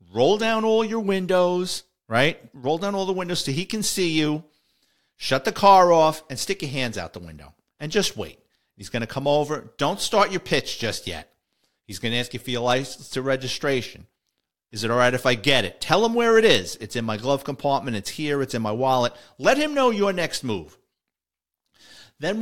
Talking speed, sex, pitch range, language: 220 wpm, male, 125-185 Hz, English